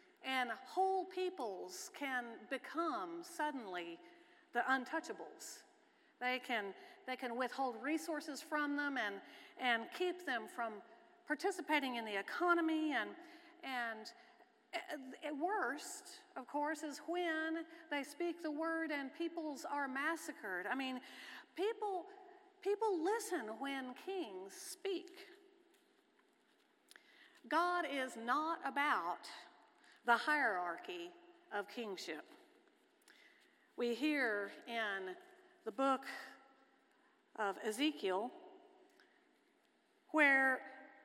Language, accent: English, American